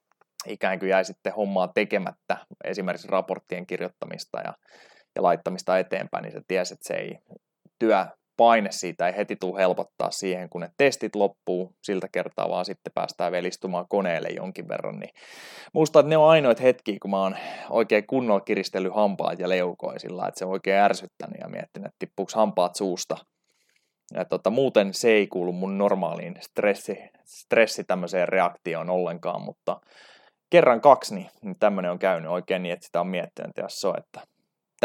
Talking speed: 160 wpm